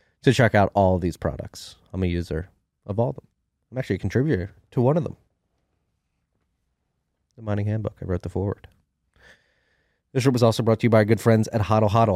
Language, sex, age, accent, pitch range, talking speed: English, male, 30-49, American, 85-105 Hz, 205 wpm